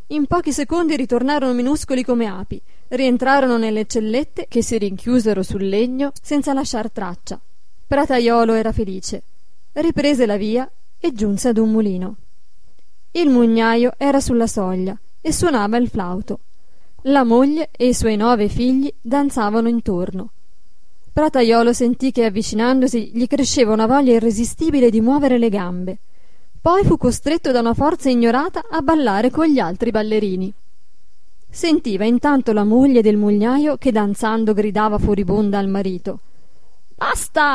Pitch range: 215-280 Hz